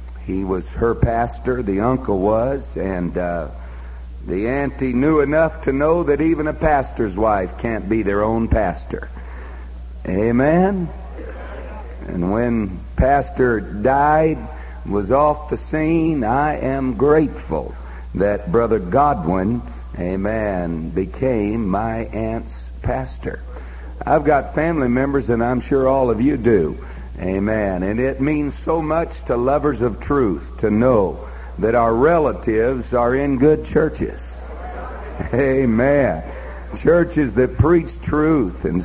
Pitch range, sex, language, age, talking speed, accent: 85-140 Hz, male, English, 60-79, 125 wpm, American